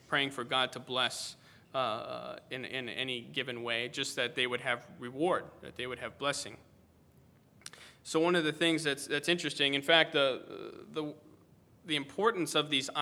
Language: English